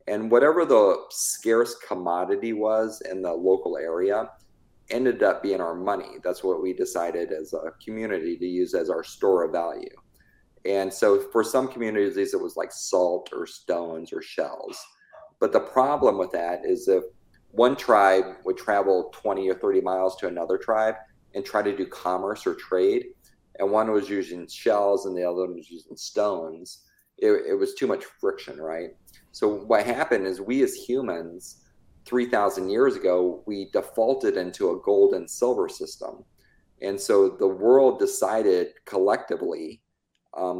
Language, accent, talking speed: English, American, 165 wpm